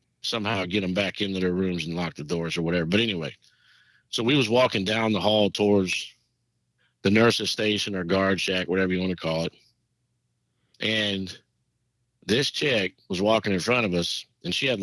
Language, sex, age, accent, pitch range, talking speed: English, male, 50-69, American, 95-120 Hz, 190 wpm